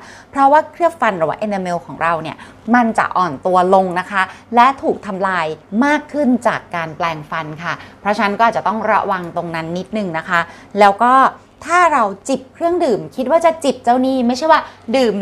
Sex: female